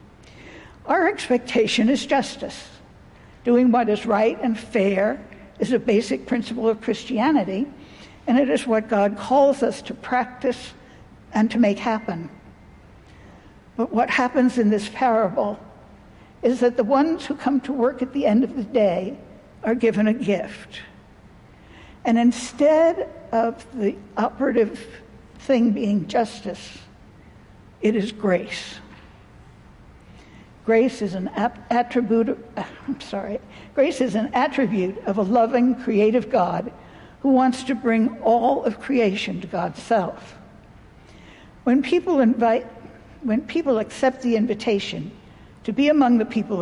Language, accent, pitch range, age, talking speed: English, American, 220-260 Hz, 60-79, 135 wpm